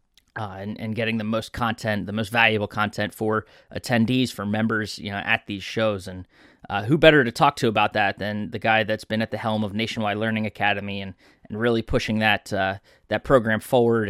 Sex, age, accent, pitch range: male, 20-39, American, 110-130 Hz